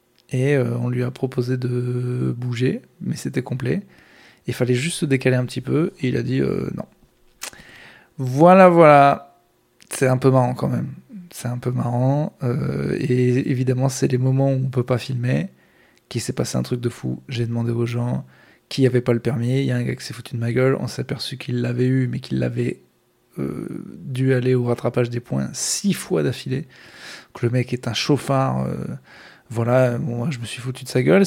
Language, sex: French, male